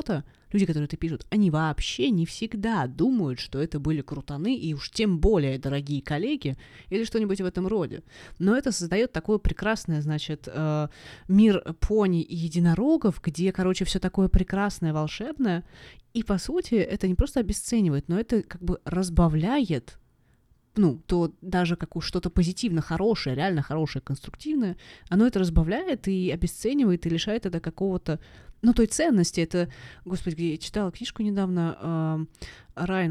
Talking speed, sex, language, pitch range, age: 145 wpm, female, Russian, 155-200 Hz, 20-39